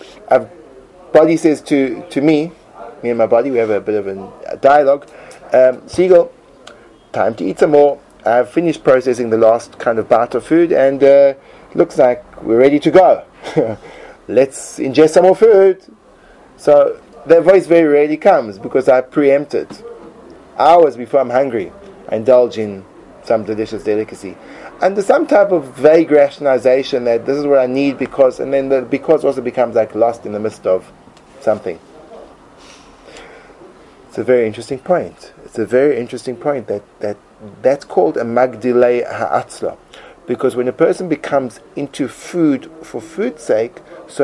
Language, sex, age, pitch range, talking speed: English, male, 30-49, 115-155 Hz, 165 wpm